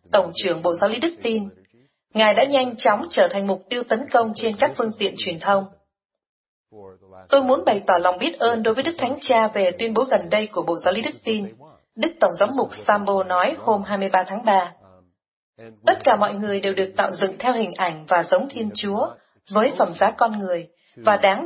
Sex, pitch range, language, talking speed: female, 180-235 Hz, Vietnamese, 220 wpm